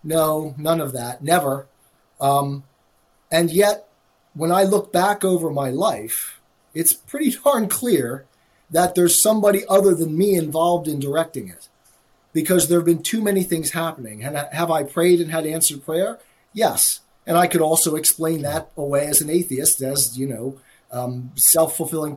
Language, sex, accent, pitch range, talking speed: English, male, American, 145-185 Hz, 160 wpm